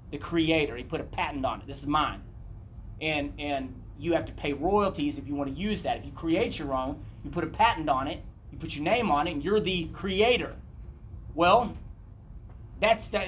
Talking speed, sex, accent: 215 wpm, male, American